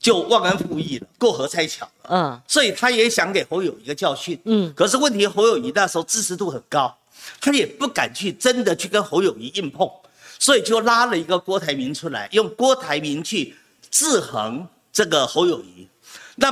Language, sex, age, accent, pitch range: Chinese, male, 50-69, native, 180-260 Hz